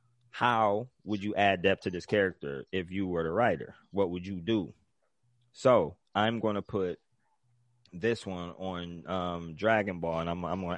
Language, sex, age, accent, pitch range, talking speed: English, male, 20-39, American, 85-105 Hz, 180 wpm